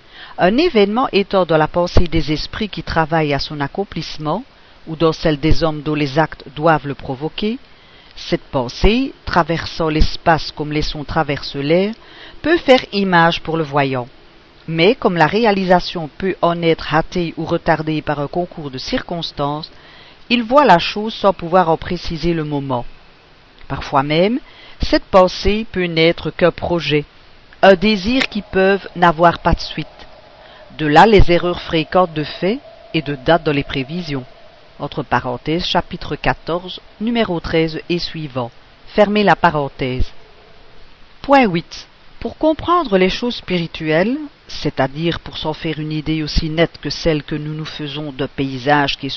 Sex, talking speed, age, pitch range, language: female, 155 wpm, 50-69, 150-185 Hz, French